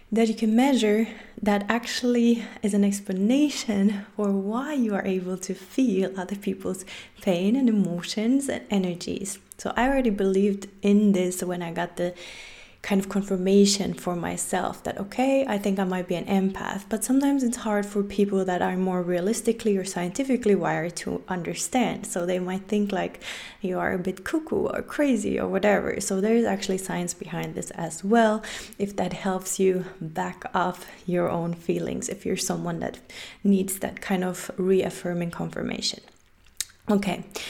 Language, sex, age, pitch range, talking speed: English, female, 20-39, 185-215 Hz, 165 wpm